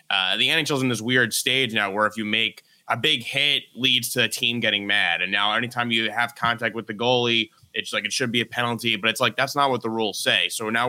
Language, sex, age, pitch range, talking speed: English, male, 20-39, 105-120 Hz, 270 wpm